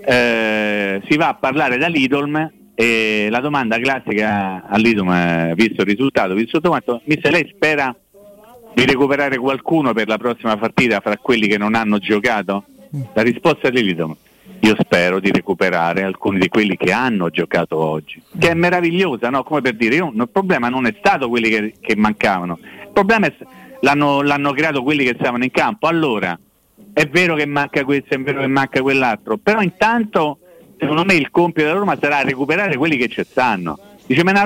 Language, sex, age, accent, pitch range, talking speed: Italian, male, 40-59, native, 115-170 Hz, 180 wpm